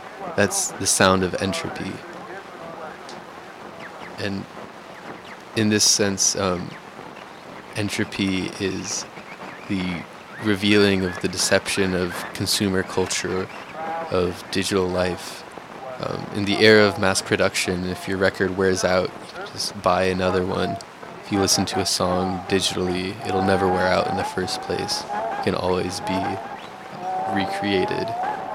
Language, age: English, 20-39